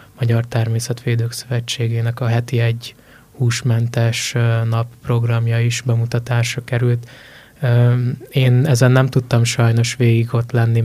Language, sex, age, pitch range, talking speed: Hungarian, male, 20-39, 115-125 Hz, 110 wpm